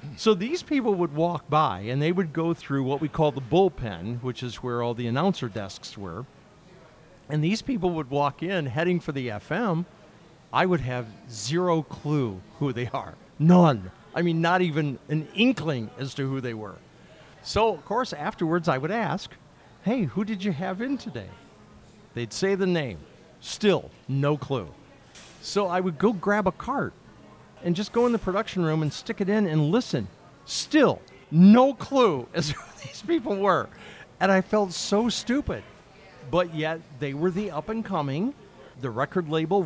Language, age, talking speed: English, 50-69, 180 wpm